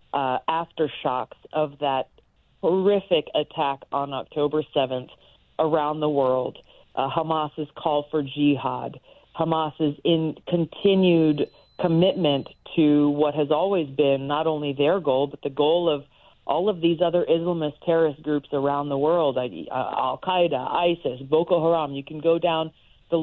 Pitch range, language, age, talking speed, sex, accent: 145-170 Hz, English, 40-59, 140 wpm, female, American